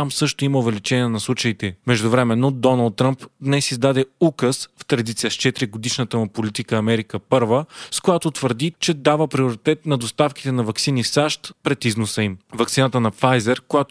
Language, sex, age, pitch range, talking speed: Bulgarian, male, 30-49, 120-140 Hz, 165 wpm